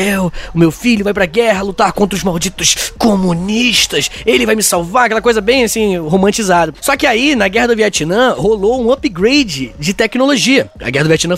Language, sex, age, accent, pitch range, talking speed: Portuguese, male, 20-39, Brazilian, 195-260 Hz, 190 wpm